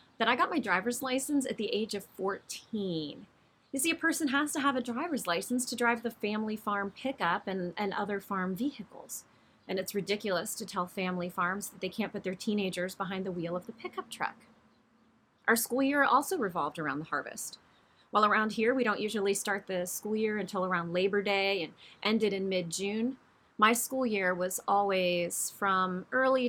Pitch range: 190-235 Hz